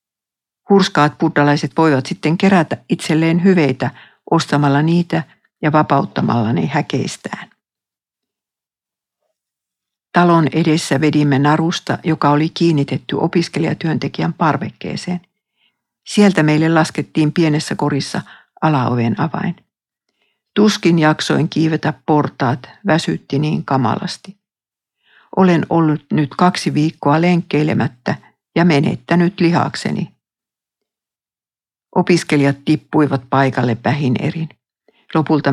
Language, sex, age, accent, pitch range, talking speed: Finnish, female, 60-79, native, 145-175 Hz, 85 wpm